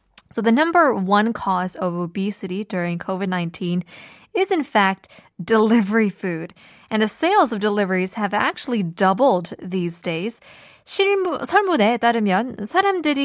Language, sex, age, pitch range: Korean, female, 20-39, 195-270 Hz